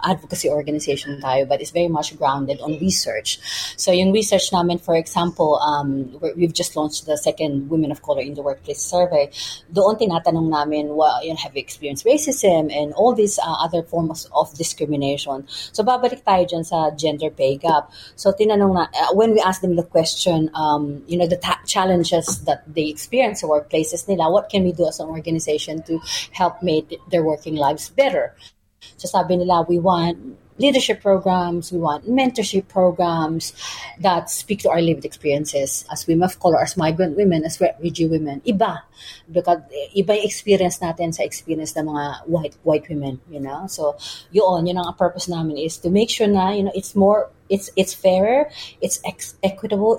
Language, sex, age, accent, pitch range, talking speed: Filipino, female, 30-49, native, 150-190 Hz, 185 wpm